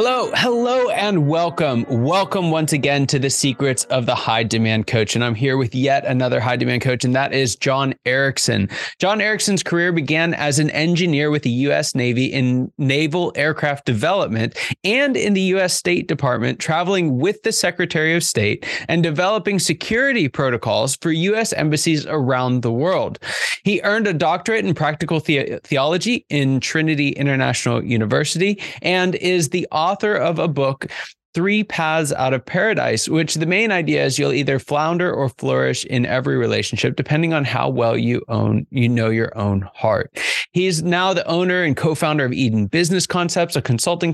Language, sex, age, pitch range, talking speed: English, male, 20-39, 130-175 Hz, 170 wpm